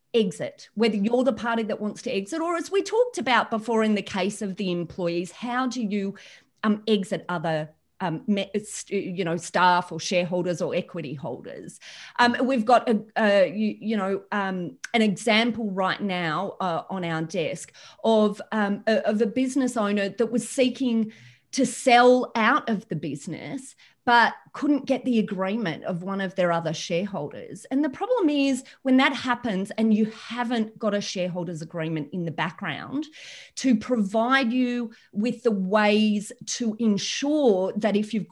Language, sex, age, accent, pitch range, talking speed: English, female, 30-49, Australian, 185-235 Hz, 170 wpm